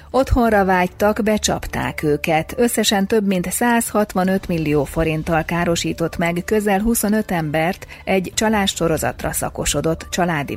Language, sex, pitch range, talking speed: Hungarian, female, 155-195 Hz, 110 wpm